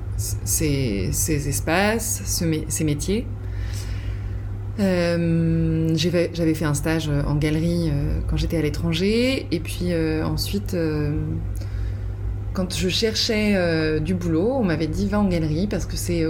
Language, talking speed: French, 135 wpm